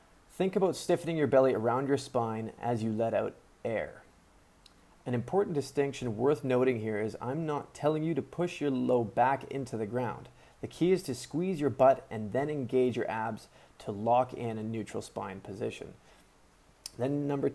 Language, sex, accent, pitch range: English, male, American, 110-140 Hz